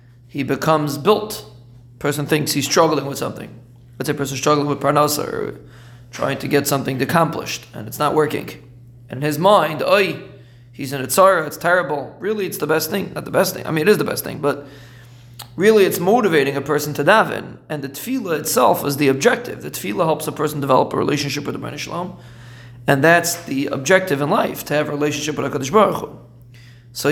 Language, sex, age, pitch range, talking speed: English, male, 30-49, 125-155 Hz, 205 wpm